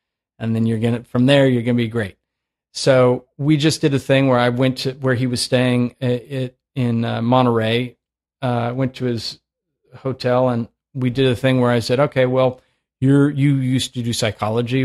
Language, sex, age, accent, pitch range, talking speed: English, male, 40-59, American, 120-150 Hz, 205 wpm